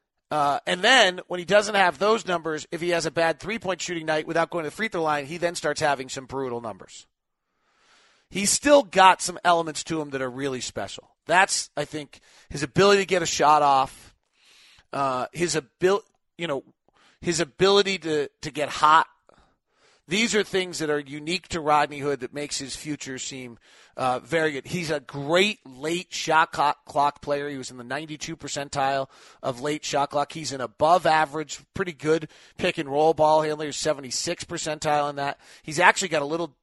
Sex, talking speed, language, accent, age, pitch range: male, 185 wpm, English, American, 40-59, 145-175 Hz